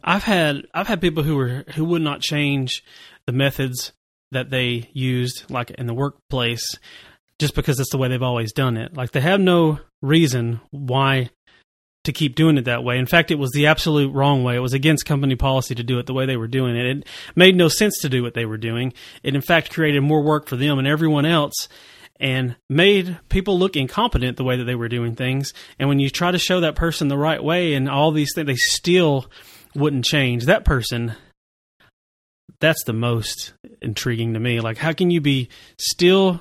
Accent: American